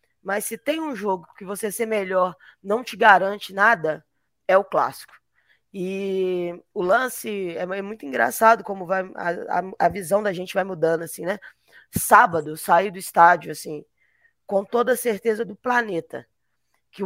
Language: Portuguese